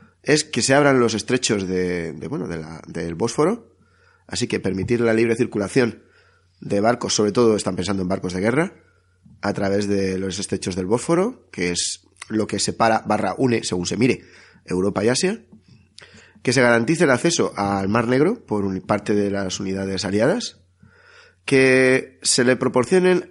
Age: 30-49